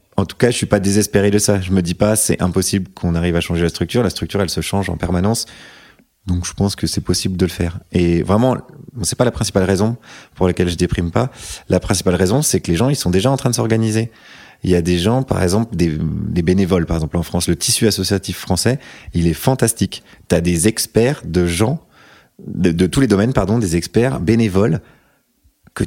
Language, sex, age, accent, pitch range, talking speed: French, male, 30-49, French, 90-110 Hz, 230 wpm